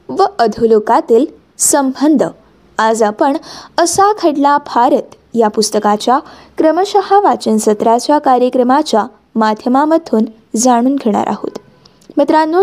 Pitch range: 225-335 Hz